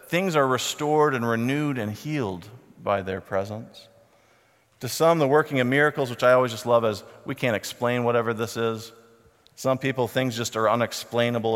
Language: English